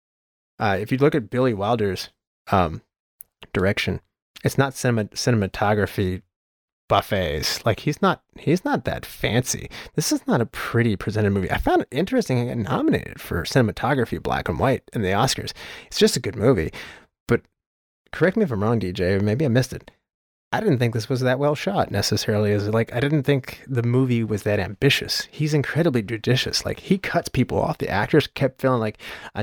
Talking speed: 185 wpm